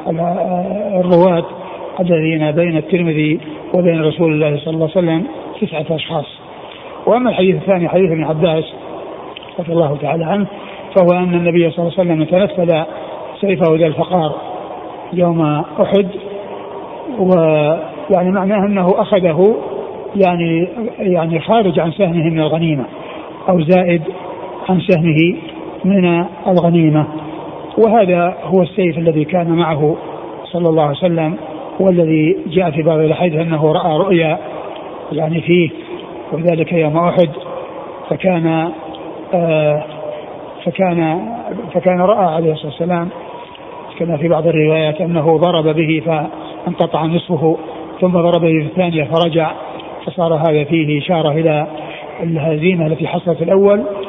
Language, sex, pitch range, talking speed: Arabic, male, 160-185 Hz, 120 wpm